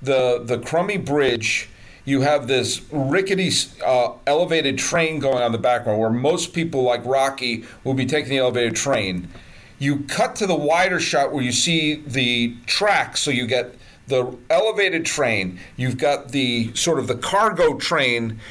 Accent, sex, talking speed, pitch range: American, male, 165 wpm, 120-160 Hz